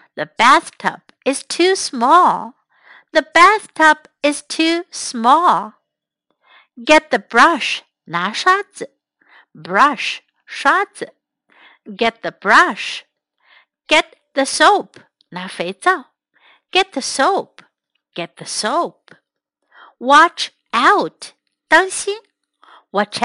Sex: female